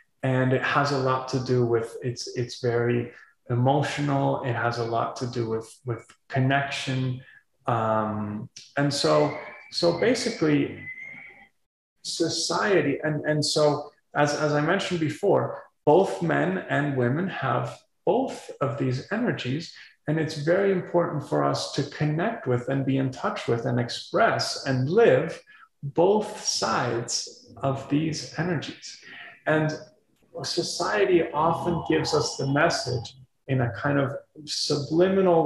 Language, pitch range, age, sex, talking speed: Slovak, 125-165 Hz, 30-49, male, 135 wpm